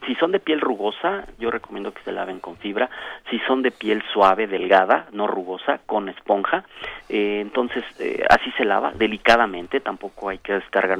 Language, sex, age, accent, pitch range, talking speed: Spanish, male, 40-59, Mexican, 100-140 Hz, 180 wpm